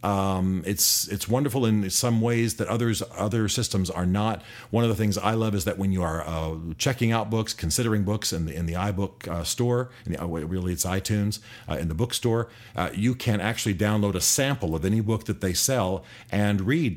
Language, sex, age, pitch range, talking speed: English, male, 50-69, 90-120 Hz, 215 wpm